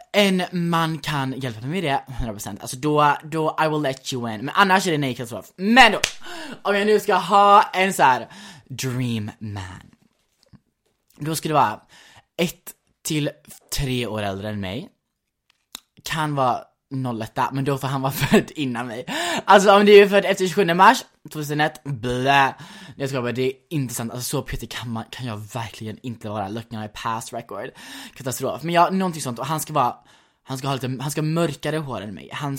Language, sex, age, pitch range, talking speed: Swedish, male, 20-39, 125-175 Hz, 195 wpm